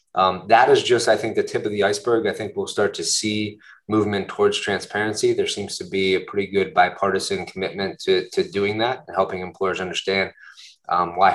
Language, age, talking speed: English, 20-39, 205 wpm